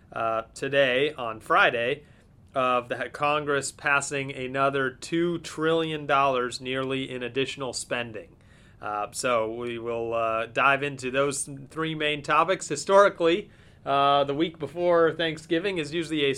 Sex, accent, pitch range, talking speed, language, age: male, American, 135-155 Hz, 130 wpm, English, 30-49